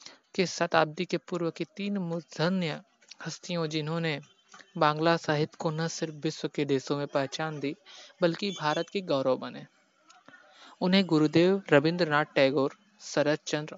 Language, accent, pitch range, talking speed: Hindi, native, 145-170 Hz, 130 wpm